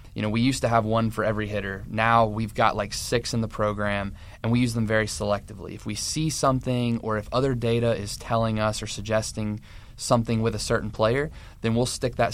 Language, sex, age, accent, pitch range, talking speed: English, male, 20-39, American, 105-115 Hz, 225 wpm